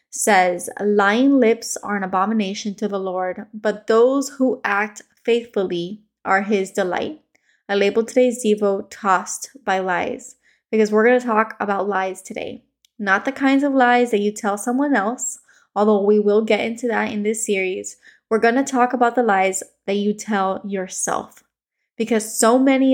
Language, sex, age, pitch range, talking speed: English, female, 20-39, 200-240 Hz, 170 wpm